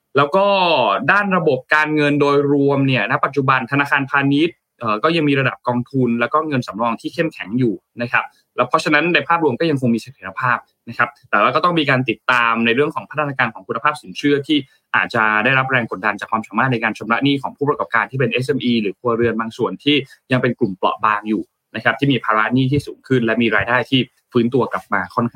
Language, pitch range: Thai, 115-150 Hz